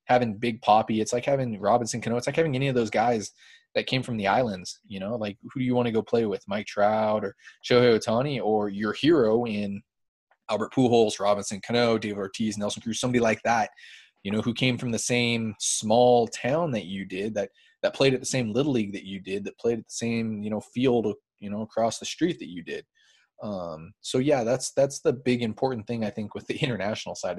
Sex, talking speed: male, 230 wpm